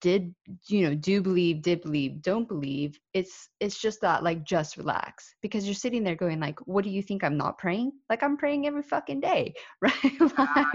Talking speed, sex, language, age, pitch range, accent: 200 wpm, female, English, 20-39, 155-195 Hz, American